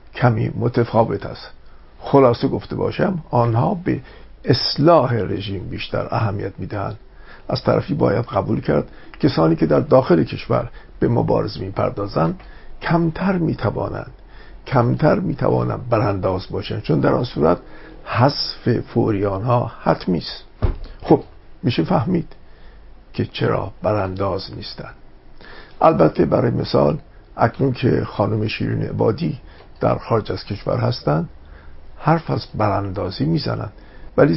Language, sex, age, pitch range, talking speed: Persian, male, 60-79, 100-125 Hz, 115 wpm